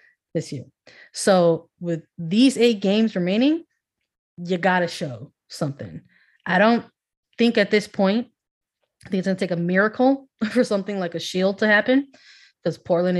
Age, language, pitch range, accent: 20-39, English, 165-195 Hz, American